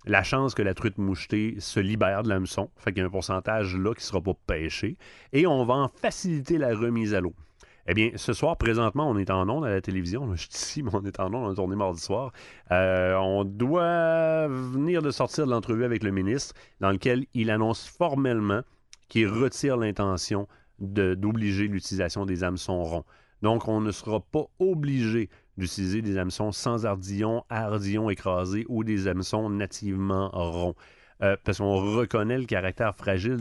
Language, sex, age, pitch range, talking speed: French, male, 30-49, 95-125 Hz, 190 wpm